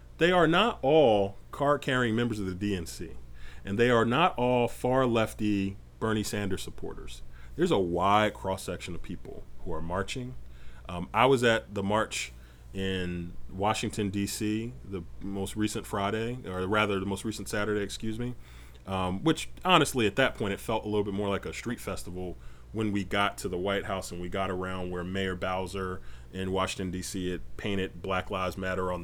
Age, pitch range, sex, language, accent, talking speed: 30-49, 90-105 Hz, male, English, American, 180 wpm